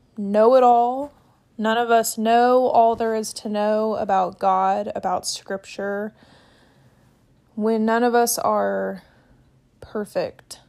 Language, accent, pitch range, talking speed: English, American, 200-235 Hz, 125 wpm